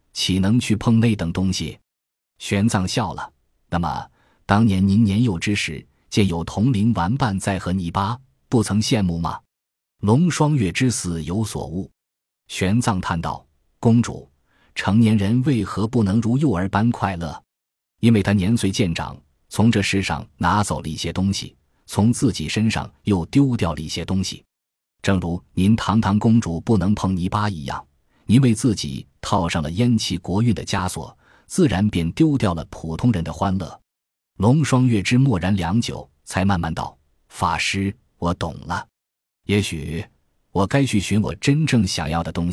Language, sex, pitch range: Chinese, male, 85-115 Hz